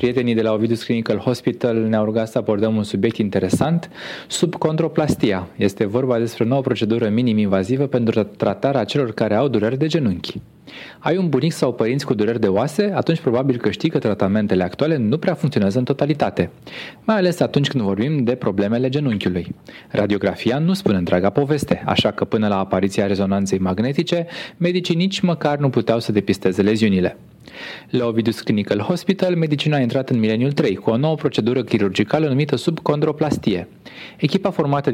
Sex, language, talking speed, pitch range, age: male, Romanian, 170 wpm, 105-150 Hz, 20-39